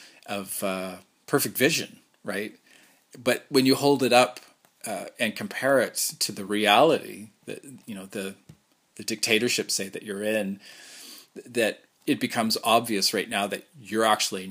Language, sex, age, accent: English, male, 40-59, American